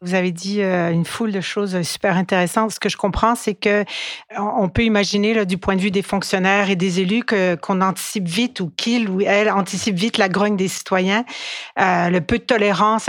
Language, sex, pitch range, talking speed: French, female, 195-225 Hz, 215 wpm